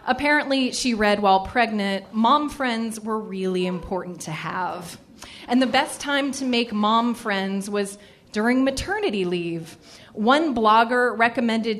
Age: 30-49